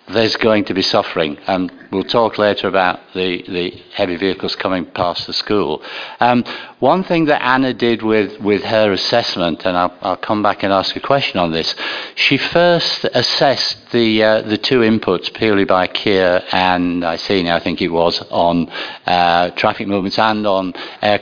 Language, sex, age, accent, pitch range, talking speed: English, male, 60-79, British, 90-115 Hz, 175 wpm